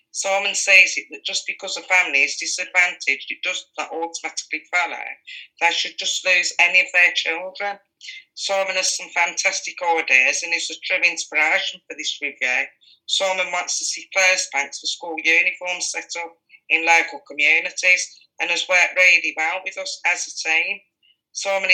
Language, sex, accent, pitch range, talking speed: English, female, British, 160-185 Hz, 170 wpm